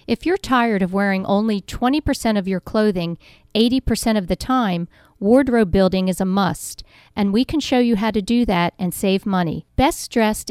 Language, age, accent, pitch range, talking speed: English, 50-69, American, 190-235 Hz, 190 wpm